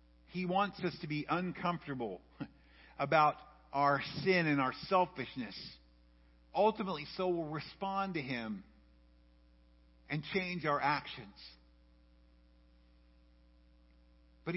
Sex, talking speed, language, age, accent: male, 95 wpm, English, 50-69, American